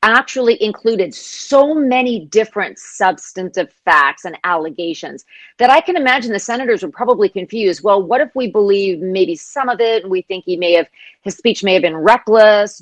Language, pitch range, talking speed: English, 180-255 Hz, 180 wpm